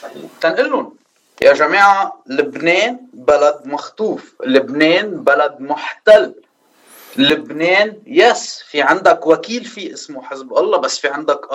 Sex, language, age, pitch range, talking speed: male, Arabic, 30-49, 160-245 Hz, 110 wpm